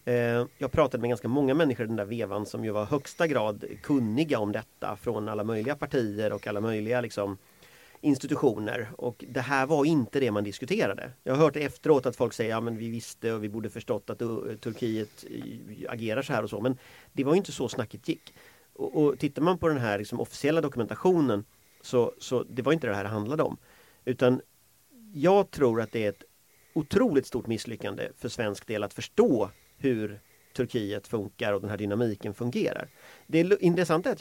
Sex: male